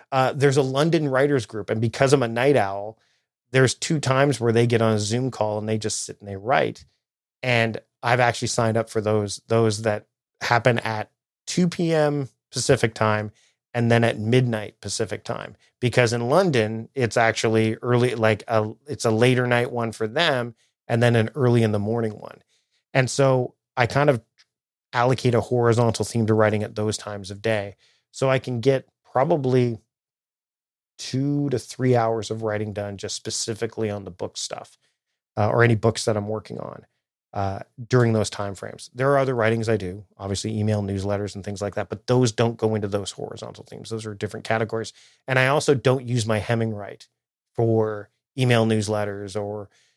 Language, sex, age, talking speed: English, male, 30-49, 185 wpm